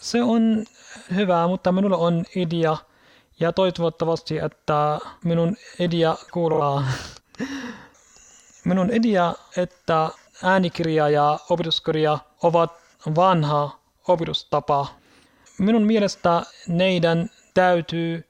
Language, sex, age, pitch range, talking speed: Finnish, male, 30-49, 155-185 Hz, 85 wpm